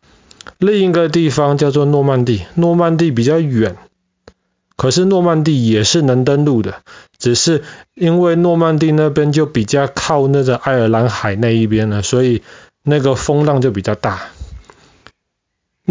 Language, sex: Chinese, male